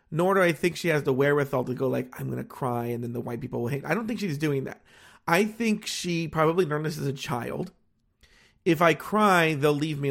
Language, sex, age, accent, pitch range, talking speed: English, male, 30-49, American, 120-175 Hz, 255 wpm